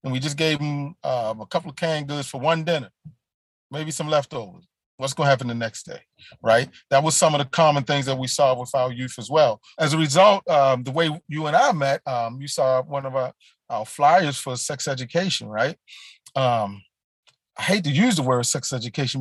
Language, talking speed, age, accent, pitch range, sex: English, 210 wpm, 40-59, American, 125-145 Hz, male